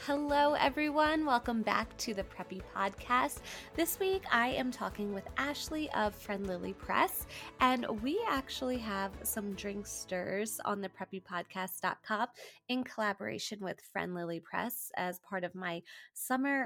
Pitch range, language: 195-260 Hz, English